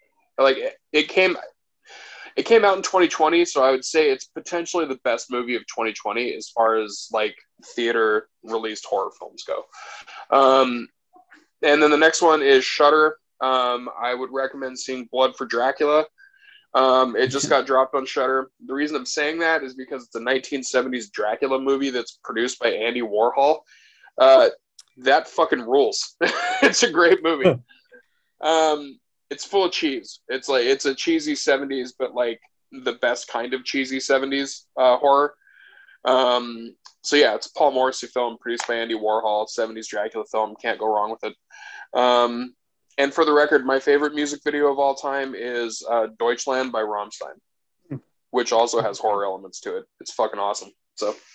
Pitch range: 120-165 Hz